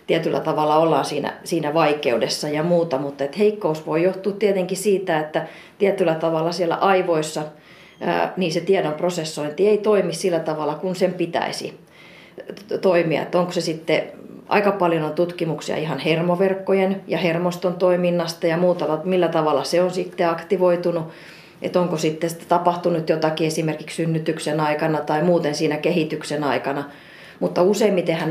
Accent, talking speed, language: native, 150 wpm, Finnish